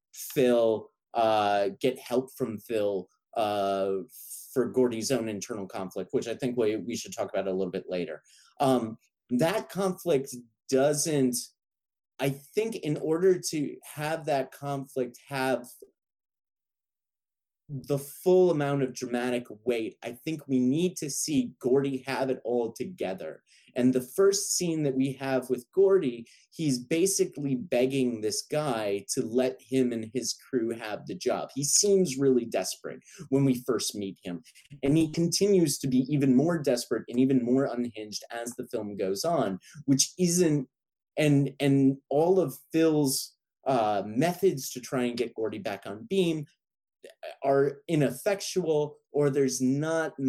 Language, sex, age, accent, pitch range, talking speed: English, male, 30-49, American, 120-150 Hz, 150 wpm